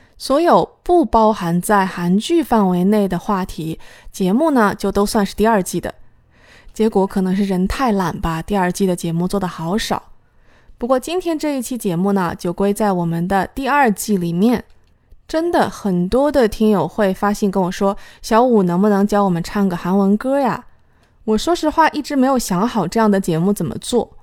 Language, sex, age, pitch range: Chinese, female, 20-39, 190-260 Hz